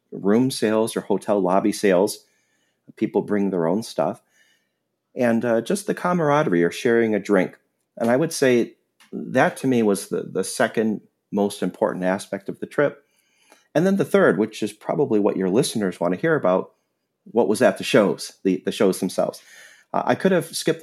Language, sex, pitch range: English, male, 100-130 Hz